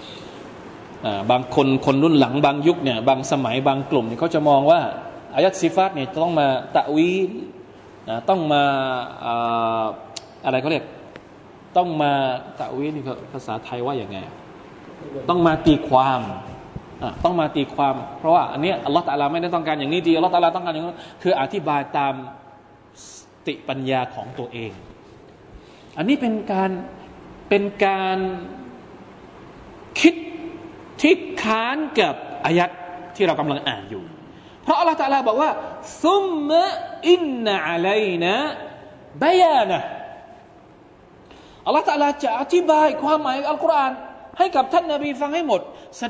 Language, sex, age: Thai, male, 20-39